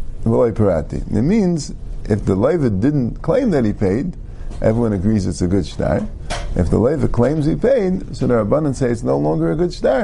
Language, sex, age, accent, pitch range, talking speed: English, male, 50-69, American, 95-135 Hz, 190 wpm